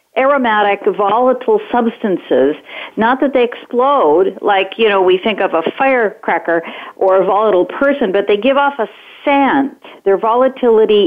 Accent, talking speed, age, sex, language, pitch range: American, 145 wpm, 50-69, female, English, 195-270 Hz